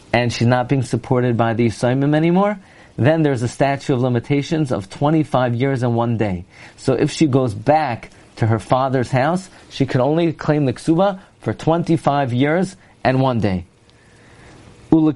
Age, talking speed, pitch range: 40-59, 170 wpm, 120-155 Hz